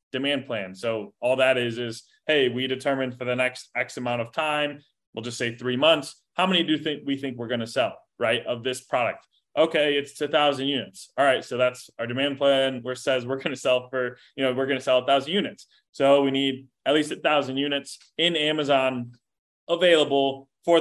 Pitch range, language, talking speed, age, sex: 125-145 Hz, English, 215 wpm, 20-39, male